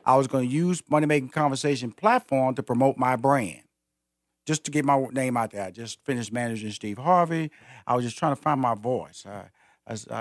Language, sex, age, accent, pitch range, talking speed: English, male, 40-59, American, 110-145 Hz, 210 wpm